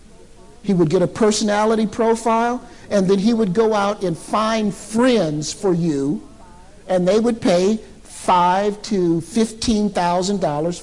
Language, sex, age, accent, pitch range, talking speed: English, male, 50-69, American, 150-205 Hz, 135 wpm